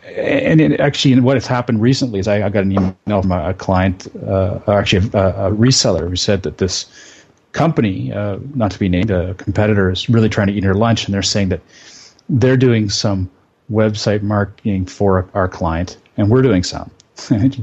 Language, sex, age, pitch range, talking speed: English, male, 30-49, 100-130 Hz, 195 wpm